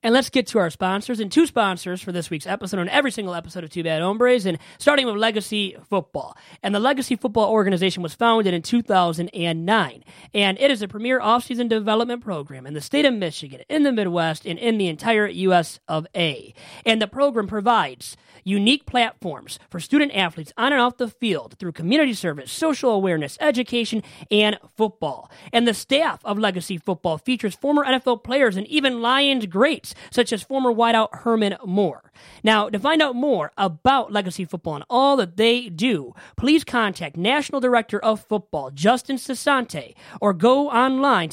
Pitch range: 185-250 Hz